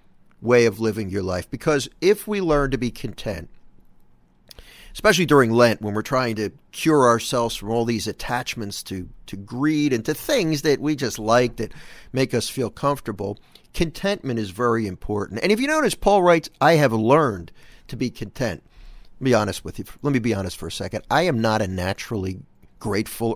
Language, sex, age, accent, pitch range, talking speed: English, male, 50-69, American, 110-140 Hz, 195 wpm